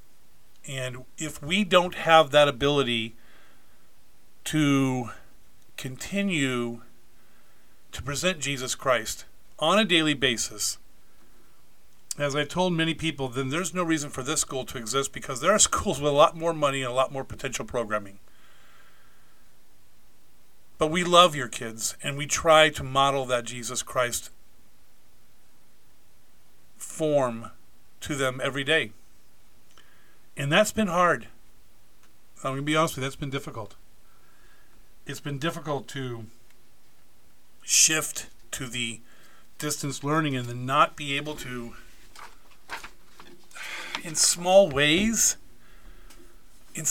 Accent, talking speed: American, 125 wpm